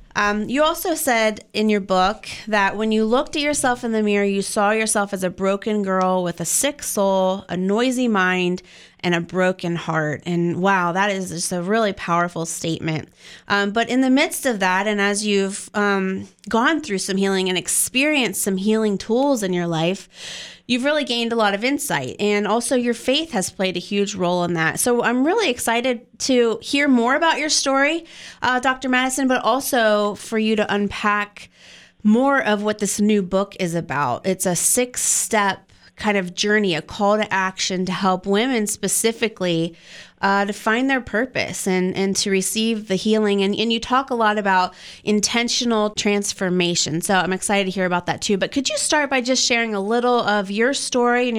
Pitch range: 190-235 Hz